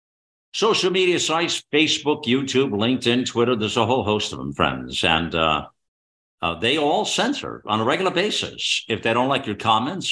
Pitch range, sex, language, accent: 105-145 Hz, male, English, American